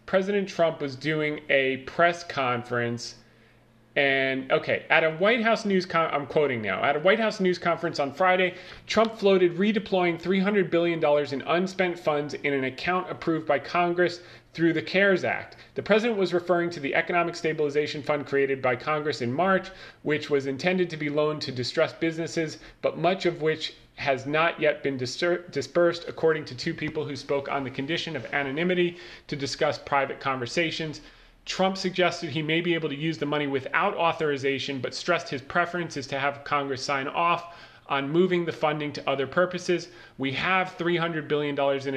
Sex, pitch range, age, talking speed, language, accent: male, 140-175 Hz, 40-59, 180 wpm, English, American